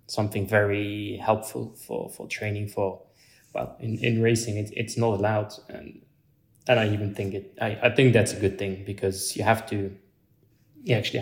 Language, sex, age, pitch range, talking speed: English, male, 20-39, 105-120 Hz, 175 wpm